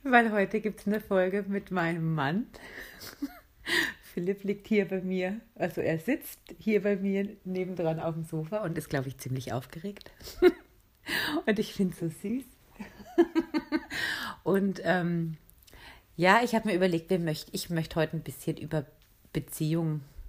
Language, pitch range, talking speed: German, 145-200 Hz, 150 wpm